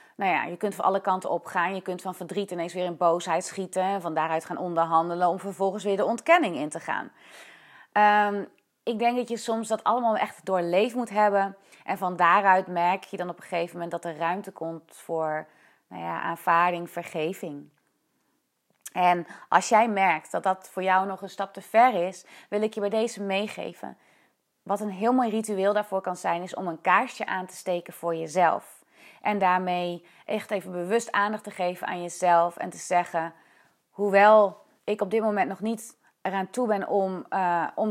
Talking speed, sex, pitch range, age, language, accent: 195 wpm, female, 170-200 Hz, 30-49, Dutch, Dutch